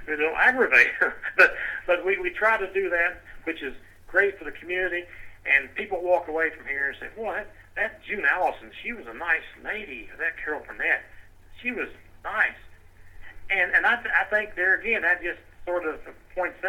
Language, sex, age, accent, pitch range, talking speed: English, male, 60-79, American, 125-175 Hz, 195 wpm